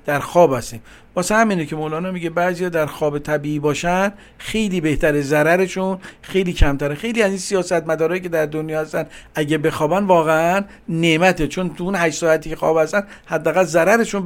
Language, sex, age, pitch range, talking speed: Persian, male, 50-69, 150-190 Hz, 170 wpm